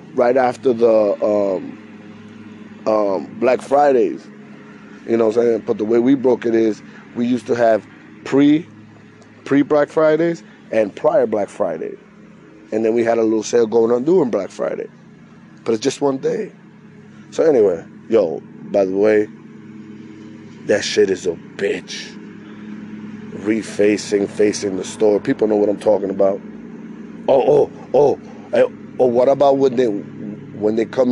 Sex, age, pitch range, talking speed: male, 20-39, 105-145 Hz, 155 wpm